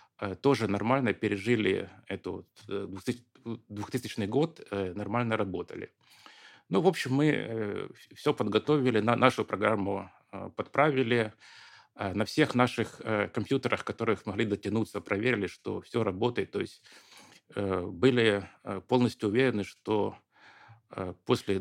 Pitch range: 105-130 Hz